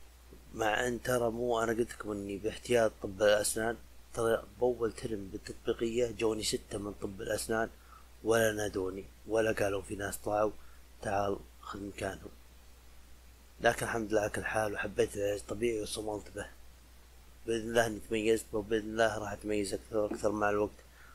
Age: 20-39